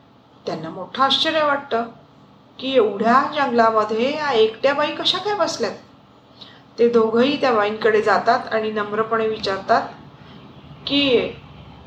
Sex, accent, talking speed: female, native, 110 wpm